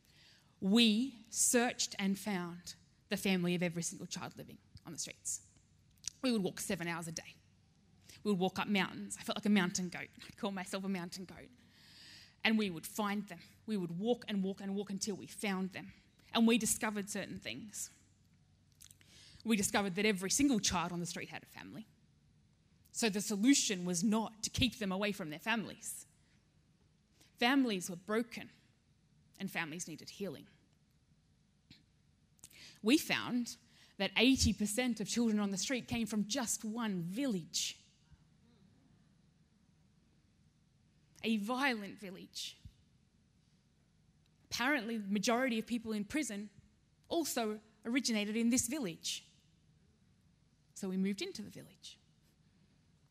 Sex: female